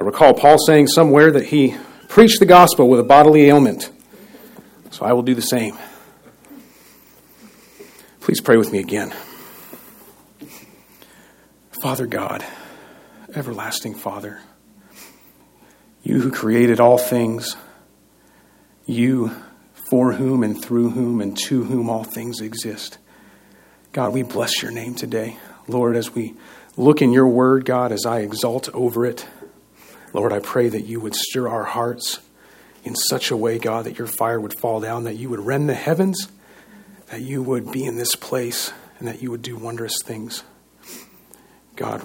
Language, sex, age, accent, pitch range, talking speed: English, male, 40-59, American, 115-140 Hz, 150 wpm